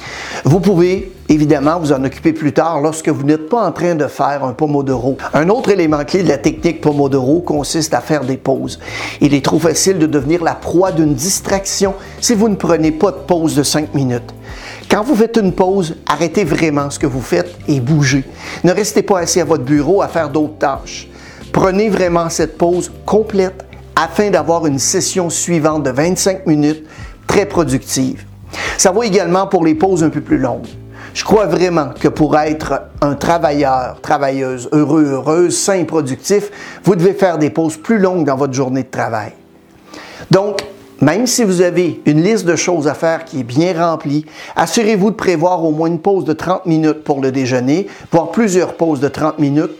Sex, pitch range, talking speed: male, 145-185 Hz, 195 wpm